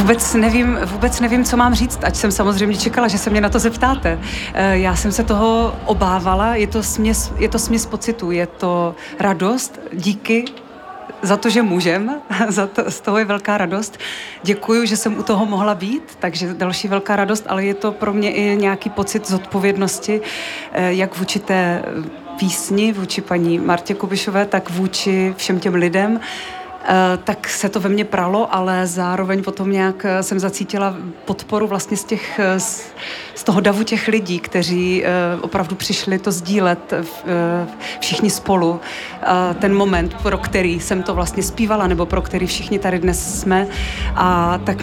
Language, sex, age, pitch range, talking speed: Czech, female, 30-49, 185-215 Hz, 160 wpm